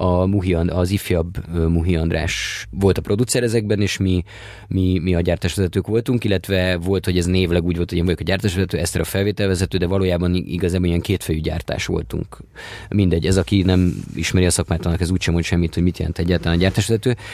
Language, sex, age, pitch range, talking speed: Hungarian, male, 30-49, 85-100 Hz, 205 wpm